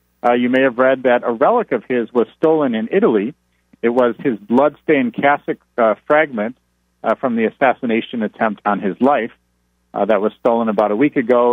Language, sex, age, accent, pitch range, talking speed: English, male, 50-69, American, 105-150 Hz, 195 wpm